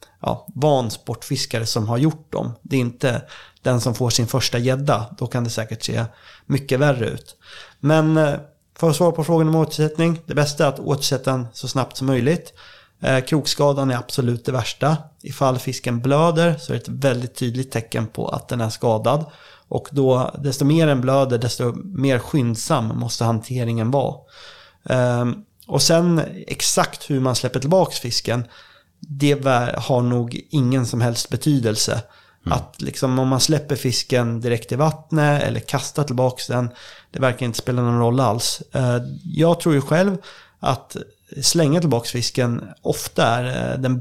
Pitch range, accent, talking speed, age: 120-150 Hz, native, 160 wpm, 30-49